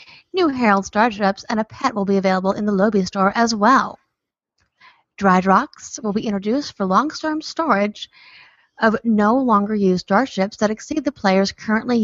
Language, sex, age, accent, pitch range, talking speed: English, female, 30-49, American, 195-250 Hz, 165 wpm